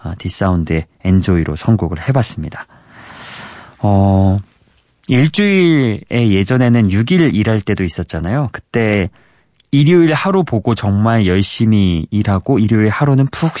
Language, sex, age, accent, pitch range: Korean, male, 30-49, native, 95-140 Hz